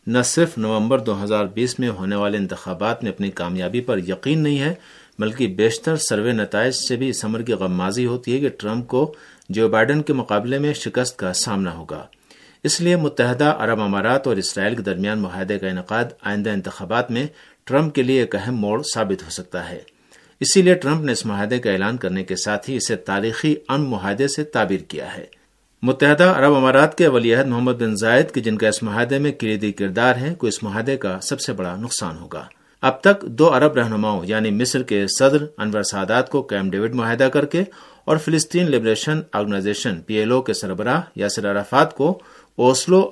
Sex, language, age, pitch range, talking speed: male, Urdu, 50-69, 105-145 Hz, 200 wpm